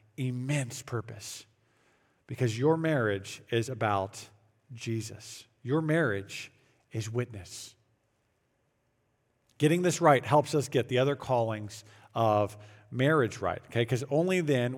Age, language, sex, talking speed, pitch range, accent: 50-69, English, male, 115 wpm, 115-160 Hz, American